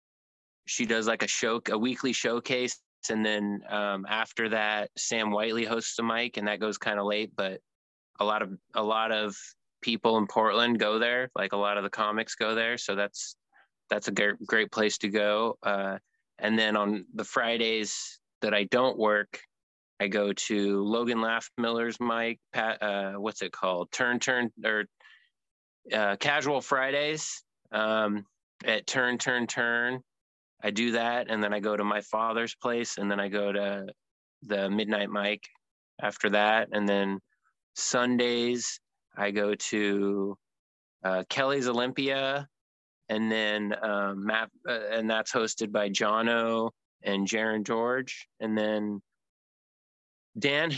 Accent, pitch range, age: American, 105-120 Hz, 20-39